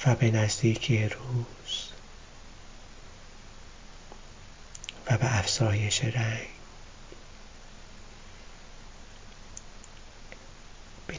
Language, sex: Persian, male